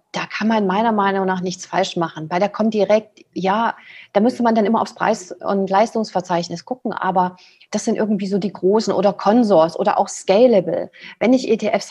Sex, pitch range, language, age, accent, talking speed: female, 185-230 Hz, German, 30-49, German, 195 wpm